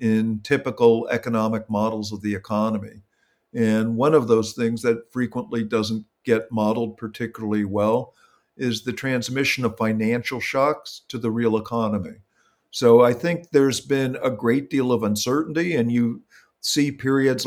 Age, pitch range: 50-69, 110-135 Hz